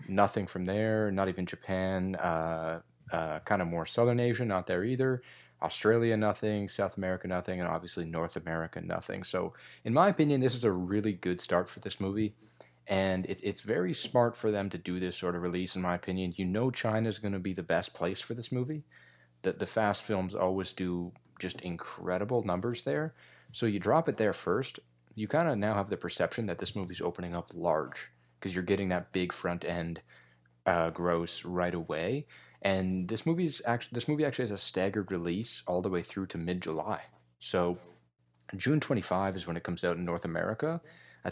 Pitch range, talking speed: 90-110 Hz, 195 wpm